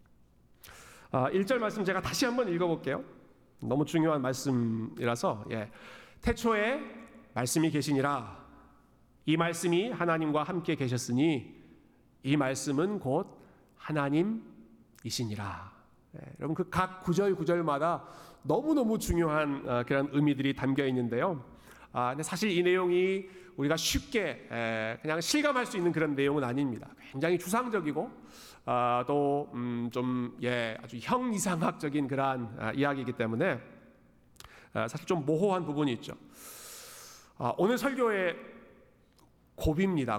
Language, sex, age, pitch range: Korean, male, 40-59, 125-185 Hz